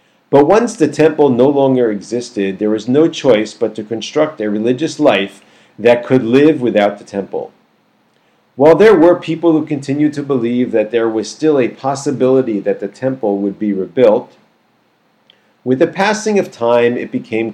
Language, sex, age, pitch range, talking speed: English, male, 40-59, 105-145 Hz, 170 wpm